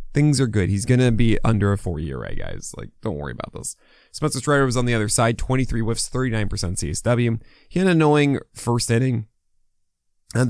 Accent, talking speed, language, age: American, 200 wpm, English, 20-39